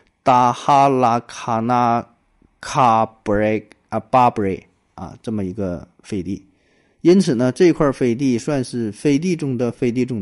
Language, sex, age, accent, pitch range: Chinese, male, 20-39, native, 110-140 Hz